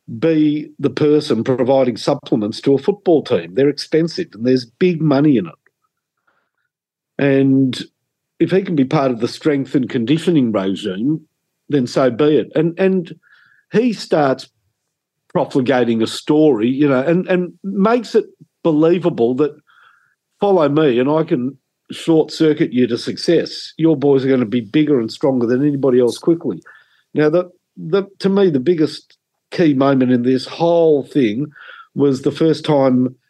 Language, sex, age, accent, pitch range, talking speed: English, male, 50-69, Australian, 130-165 Hz, 155 wpm